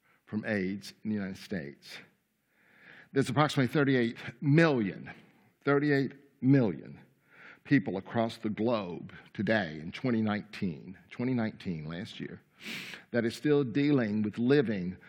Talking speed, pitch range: 110 wpm, 110-130 Hz